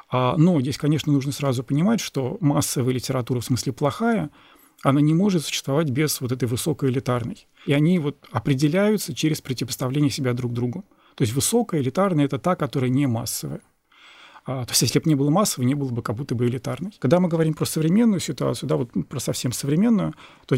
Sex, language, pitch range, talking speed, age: male, Russian, 135-165 Hz, 190 wpm, 40-59